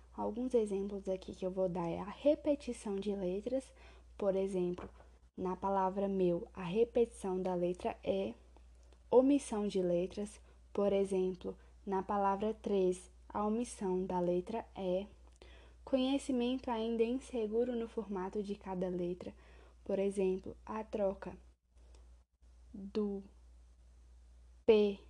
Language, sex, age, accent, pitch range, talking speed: Portuguese, female, 10-29, Brazilian, 180-225 Hz, 115 wpm